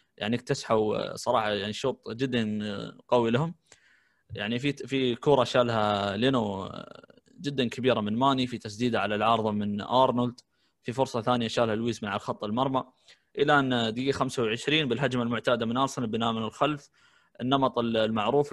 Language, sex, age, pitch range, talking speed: Arabic, male, 20-39, 115-135 Hz, 150 wpm